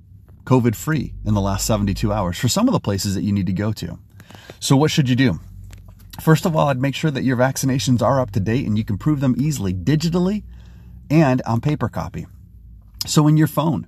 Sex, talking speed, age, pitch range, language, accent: male, 220 wpm, 30-49, 100-130 Hz, English, American